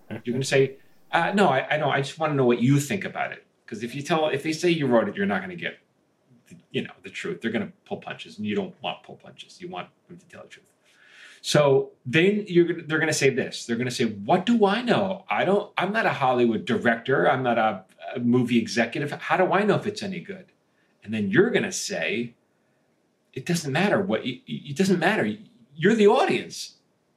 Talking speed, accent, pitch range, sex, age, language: 245 wpm, American, 125-195 Hz, male, 30-49, English